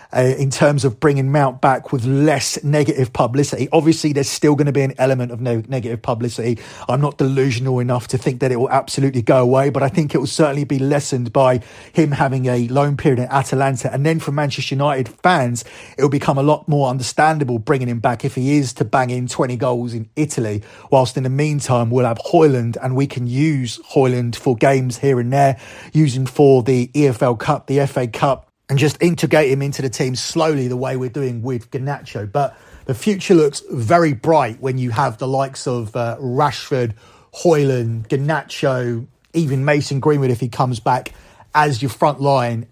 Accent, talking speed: British, 200 wpm